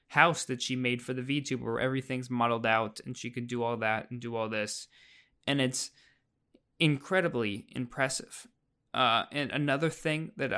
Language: English